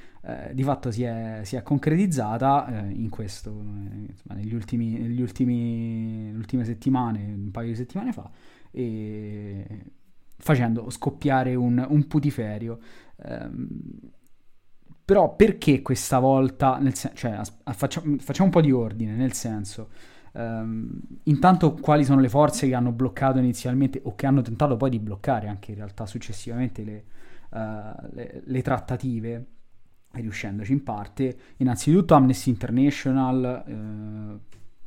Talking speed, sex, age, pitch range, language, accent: 140 wpm, male, 20-39, 110-130 Hz, Italian, native